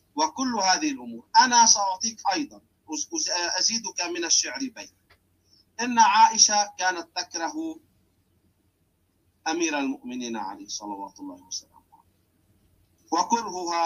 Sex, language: male, Arabic